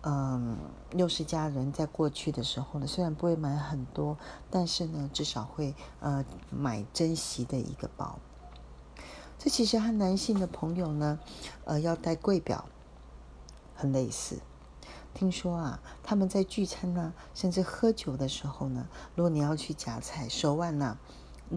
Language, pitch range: Chinese, 130-180 Hz